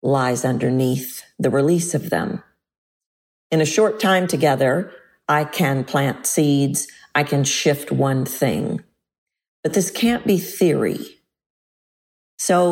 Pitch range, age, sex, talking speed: 140-175 Hz, 50-69, female, 125 wpm